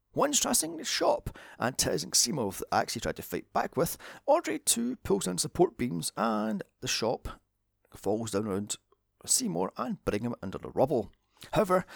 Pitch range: 100-150 Hz